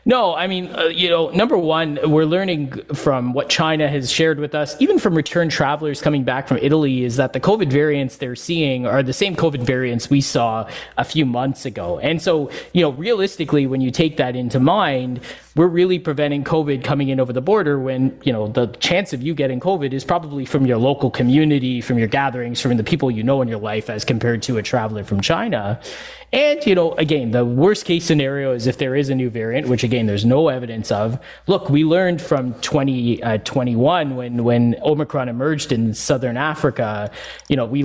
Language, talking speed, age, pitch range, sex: English, 210 wpm, 20-39, 125-155 Hz, male